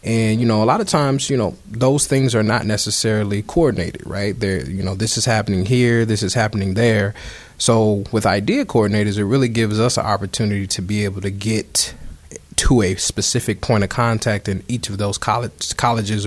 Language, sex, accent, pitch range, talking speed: English, male, American, 100-115 Hz, 200 wpm